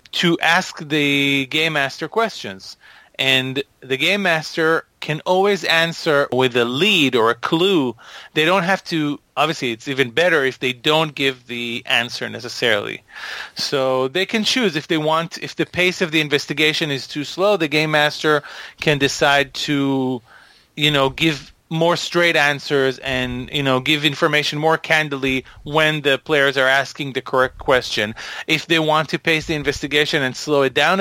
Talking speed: 170 wpm